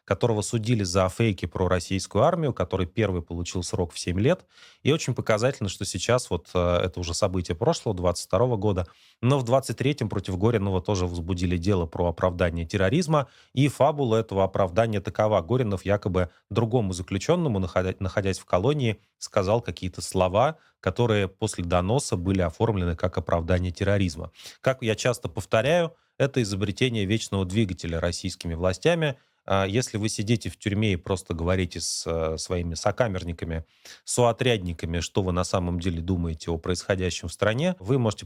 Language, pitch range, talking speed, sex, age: Russian, 90-115 Hz, 150 wpm, male, 30-49